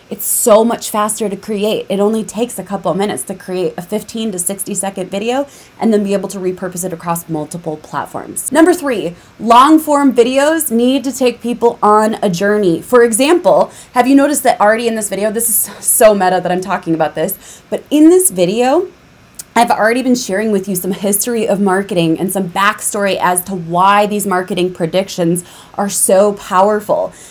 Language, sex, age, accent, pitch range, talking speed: English, female, 20-39, American, 185-235 Hz, 195 wpm